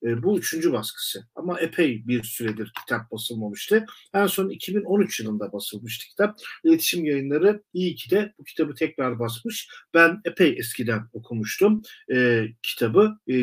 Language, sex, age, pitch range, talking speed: Turkish, male, 50-69, 120-180 Hz, 145 wpm